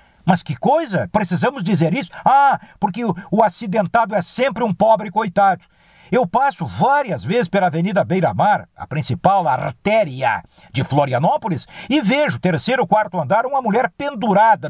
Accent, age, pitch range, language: Brazilian, 60-79, 165-220 Hz, Portuguese